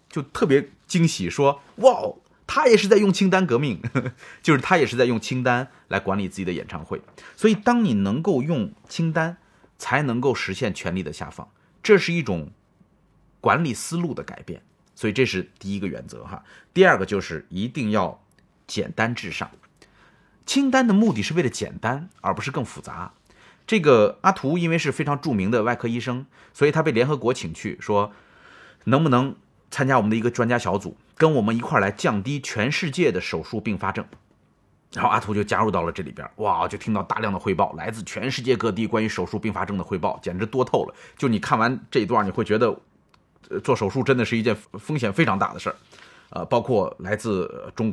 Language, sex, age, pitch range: Japanese, male, 30-49, 105-165 Hz